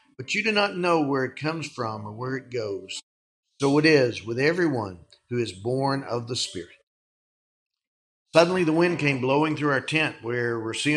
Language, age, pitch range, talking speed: English, 50-69, 120-150 Hz, 185 wpm